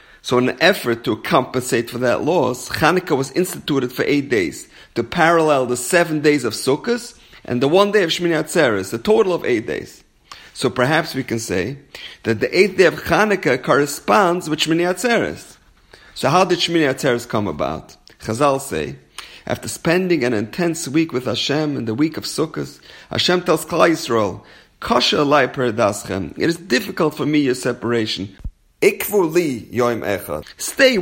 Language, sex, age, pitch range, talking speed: English, male, 40-59, 125-175 Hz, 165 wpm